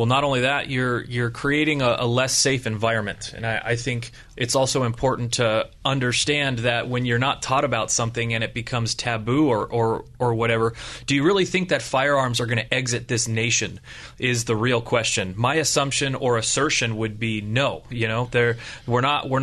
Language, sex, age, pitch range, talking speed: English, male, 30-49, 120-140 Hz, 200 wpm